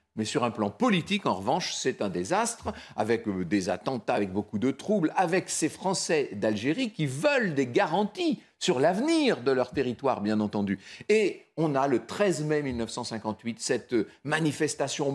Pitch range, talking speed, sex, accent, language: 125-200 Hz, 160 wpm, male, French, French